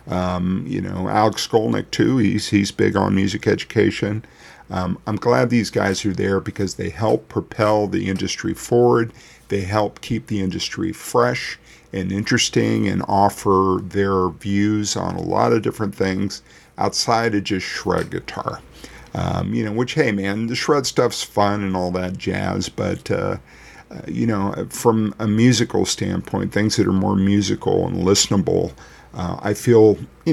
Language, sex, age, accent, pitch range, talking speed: English, male, 50-69, American, 95-110 Hz, 165 wpm